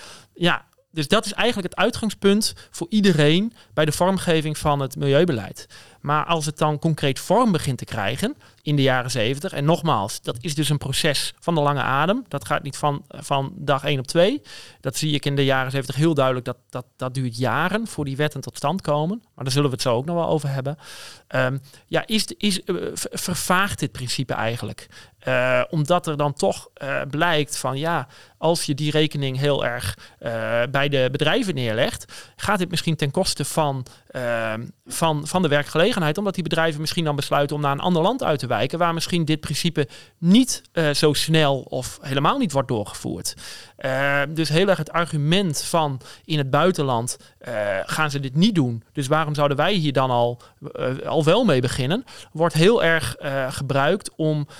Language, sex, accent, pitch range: Dutch, male, Dutch, 135-165 Hz